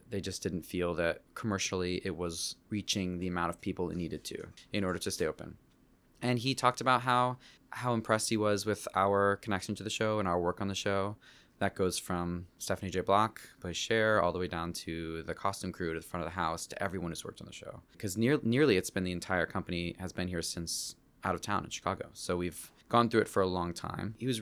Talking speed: 240 wpm